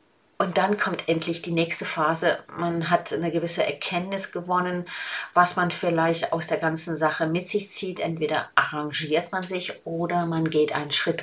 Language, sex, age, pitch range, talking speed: German, female, 40-59, 165-200 Hz, 170 wpm